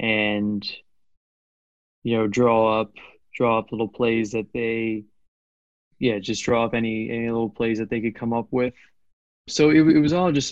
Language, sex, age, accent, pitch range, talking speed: English, male, 20-39, American, 105-120 Hz, 175 wpm